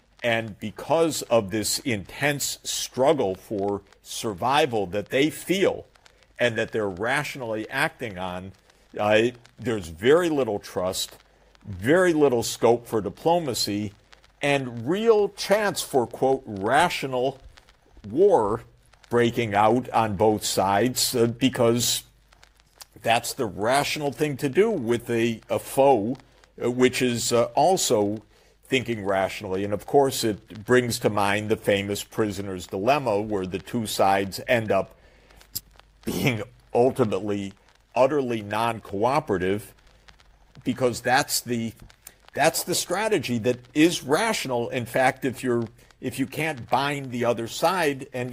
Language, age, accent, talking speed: English, 50-69, American, 125 wpm